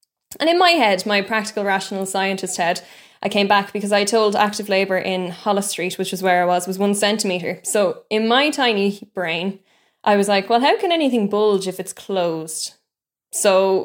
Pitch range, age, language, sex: 185-210 Hz, 10-29, English, female